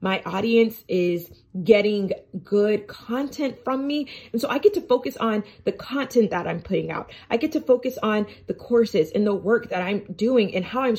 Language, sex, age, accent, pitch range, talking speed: English, female, 30-49, American, 205-250 Hz, 200 wpm